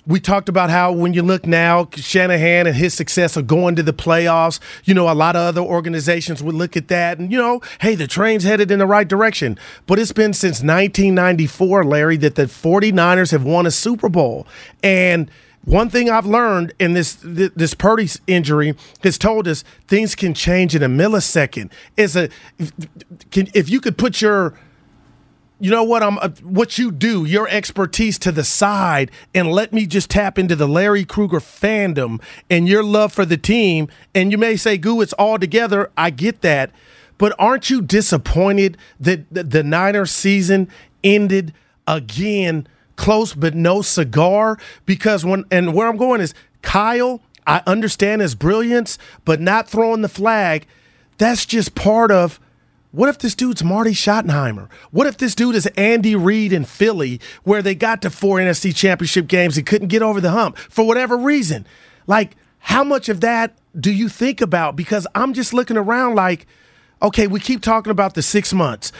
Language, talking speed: English, 185 wpm